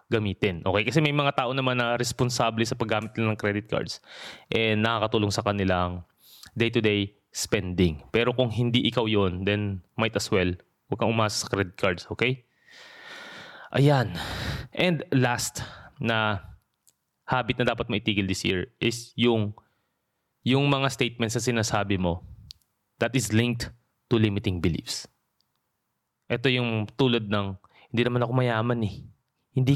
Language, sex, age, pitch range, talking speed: Filipino, male, 20-39, 105-125 Hz, 140 wpm